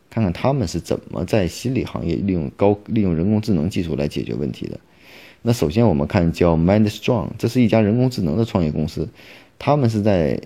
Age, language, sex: 30-49, Chinese, male